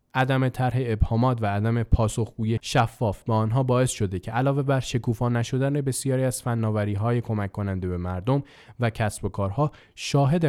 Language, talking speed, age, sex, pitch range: Persian, 165 wpm, 20-39, male, 105-130 Hz